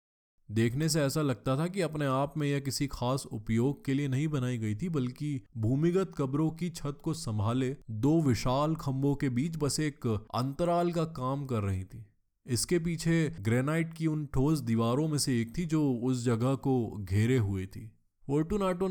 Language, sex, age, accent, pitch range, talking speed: Hindi, male, 20-39, native, 110-140 Hz, 185 wpm